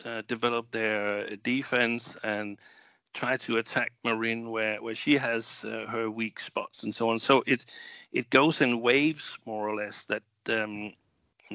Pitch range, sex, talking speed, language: 110-125 Hz, male, 160 wpm, English